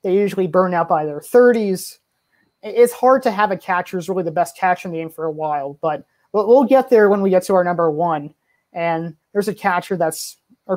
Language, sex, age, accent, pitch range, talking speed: English, male, 20-39, American, 175-205 Hz, 235 wpm